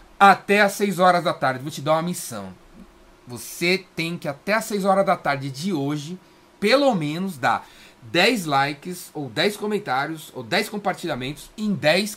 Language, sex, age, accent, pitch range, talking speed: Portuguese, male, 30-49, Brazilian, 150-205 Hz, 175 wpm